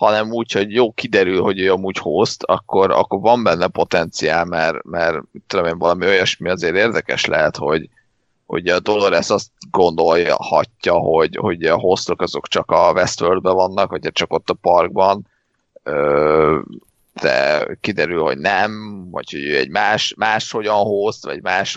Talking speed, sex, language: 155 wpm, male, Hungarian